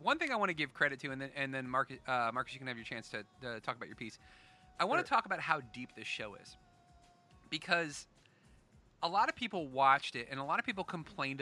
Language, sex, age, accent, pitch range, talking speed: English, male, 30-49, American, 125-155 Hz, 255 wpm